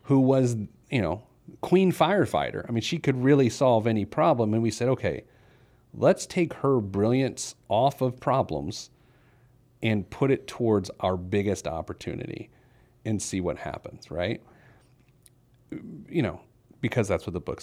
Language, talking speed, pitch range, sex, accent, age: English, 150 wpm, 110-135 Hz, male, American, 40-59